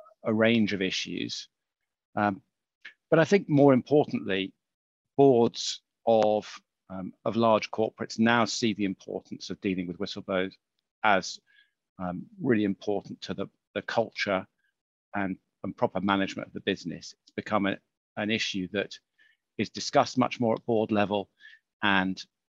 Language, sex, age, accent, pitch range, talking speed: English, male, 50-69, British, 95-115 Hz, 140 wpm